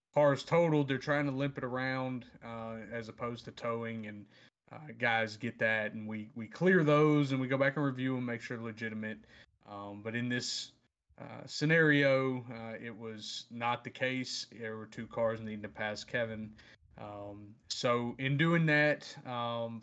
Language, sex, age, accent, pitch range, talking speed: English, male, 30-49, American, 115-130 Hz, 180 wpm